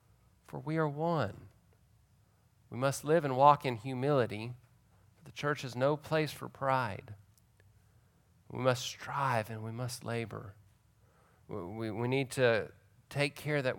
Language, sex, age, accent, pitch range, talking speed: English, male, 40-59, American, 105-130 Hz, 145 wpm